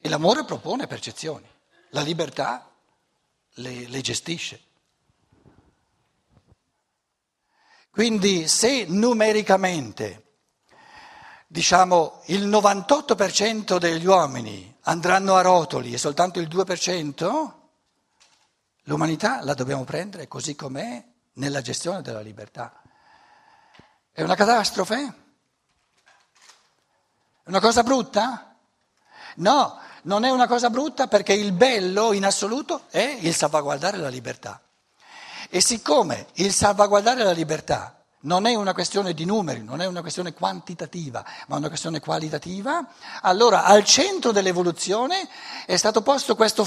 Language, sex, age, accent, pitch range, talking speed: Italian, male, 60-79, native, 155-220 Hz, 110 wpm